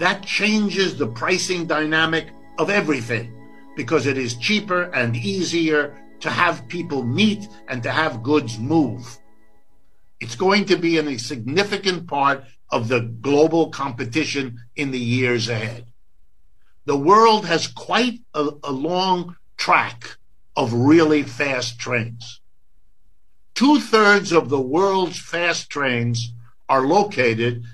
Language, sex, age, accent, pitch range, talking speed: English, male, 60-79, American, 120-165 Hz, 125 wpm